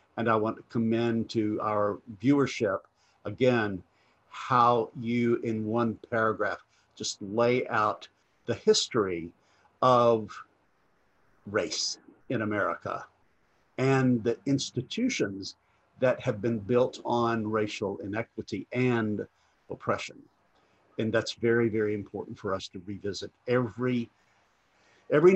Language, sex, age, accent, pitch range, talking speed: English, male, 50-69, American, 105-130 Hz, 110 wpm